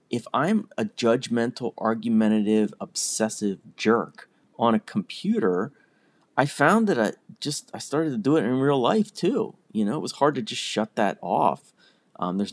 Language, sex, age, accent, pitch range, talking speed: English, male, 30-49, American, 100-145 Hz, 170 wpm